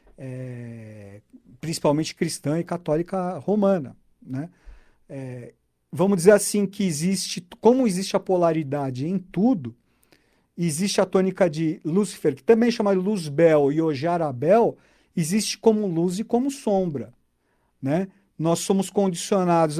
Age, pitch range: 50-69, 155-200 Hz